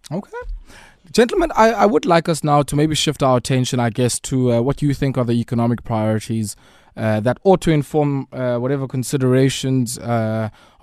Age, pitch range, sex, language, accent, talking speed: 20-39, 125-150 Hz, male, English, South African, 185 wpm